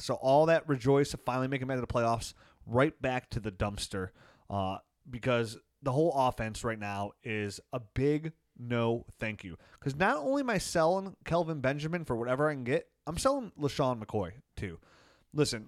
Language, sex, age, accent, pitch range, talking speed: English, male, 30-49, American, 110-140 Hz, 190 wpm